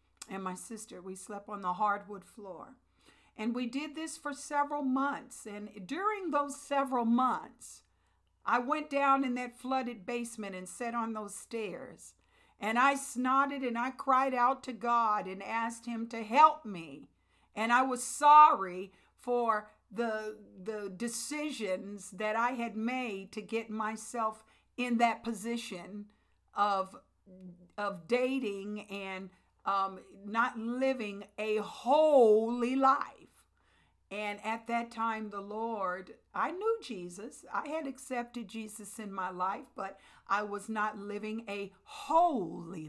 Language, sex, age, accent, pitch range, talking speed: English, female, 50-69, American, 205-260 Hz, 140 wpm